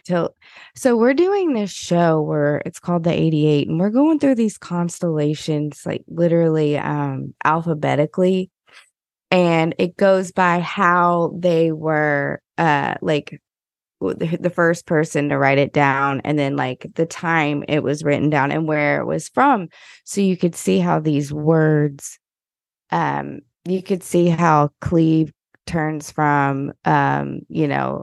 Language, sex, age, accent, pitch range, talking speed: English, female, 20-39, American, 145-175 Hz, 145 wpm